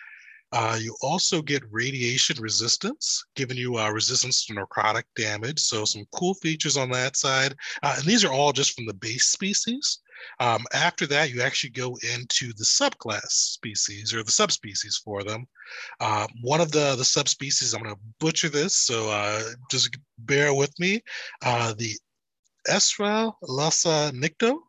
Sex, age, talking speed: male, 20-39, 160 wpm